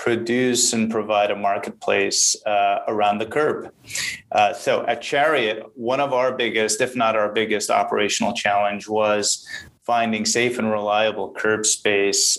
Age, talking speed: 30-49, 145 wpm